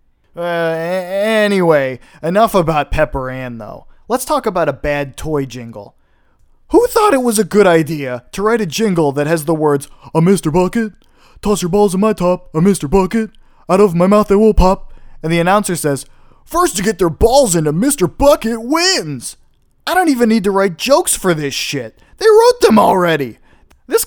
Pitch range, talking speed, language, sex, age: 140-210 Hz, 190 wpm, English, male, 20-39